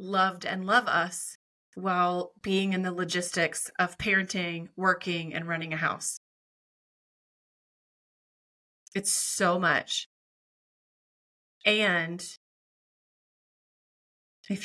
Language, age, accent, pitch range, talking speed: English, 30-49, American, 170-195 Hz, 85 wpm